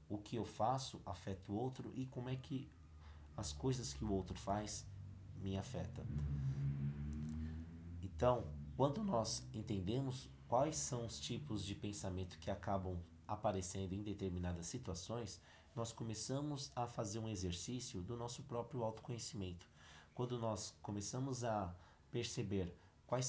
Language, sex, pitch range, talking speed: Portuguese, male, 95-120 Hz, 130 wpm